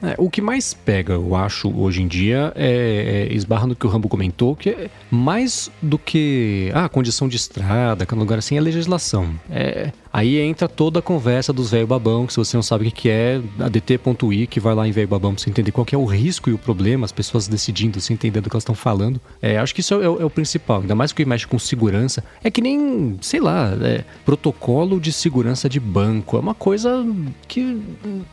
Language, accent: Portuguese, Brazilian